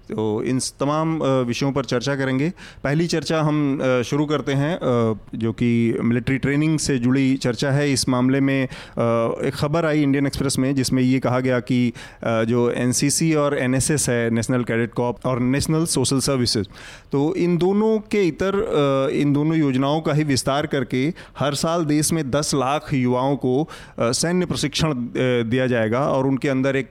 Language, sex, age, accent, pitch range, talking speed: Hindi, male, 30-49, native, 125-145 Hz, 165 wpm